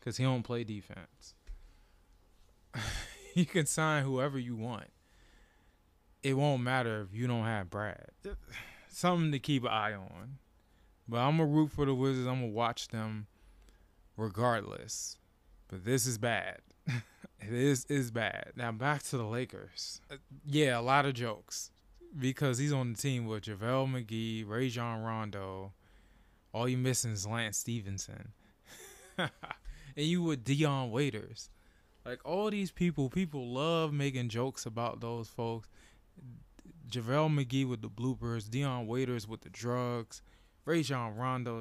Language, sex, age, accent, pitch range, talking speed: English, male, 20-39, American, 105-135 Hz, 145 wpm